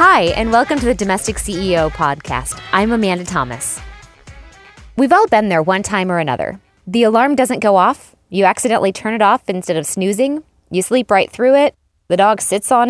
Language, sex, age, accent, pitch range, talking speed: English, female, 20-39, American, 175-250 Hz, 190 wpm